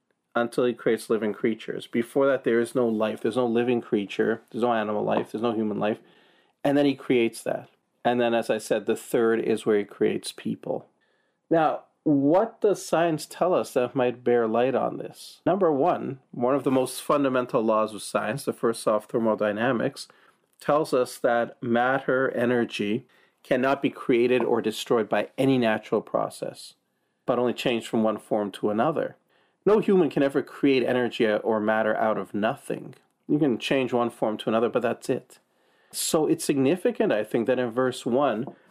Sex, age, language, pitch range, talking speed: male, 40-59, English, 110-135 Hz, 185 wpm